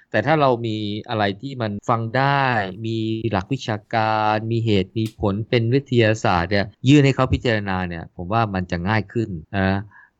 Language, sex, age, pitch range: Thai, male, 20-39, 90-115 Hz